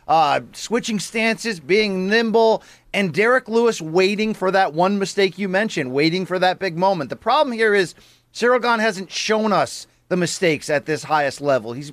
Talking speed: 175 wpm